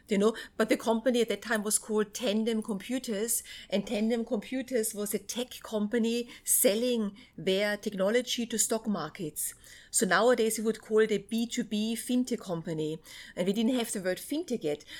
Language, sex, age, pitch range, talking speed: English, female, 30-49, 210-245 Hz, 170 wpm